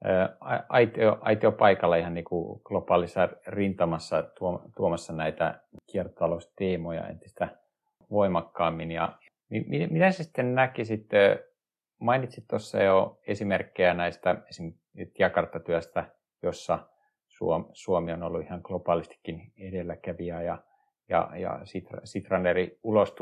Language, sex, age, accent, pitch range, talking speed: Finnish, male, 50-69, native, 85-110 Hz, 105 wpm